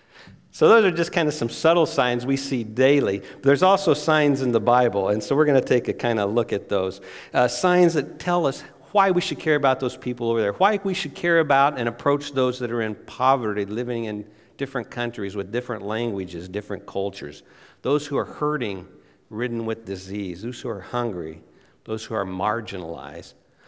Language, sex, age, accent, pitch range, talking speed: English, male, 50-69, American, 100-140 Hz, 205 wpm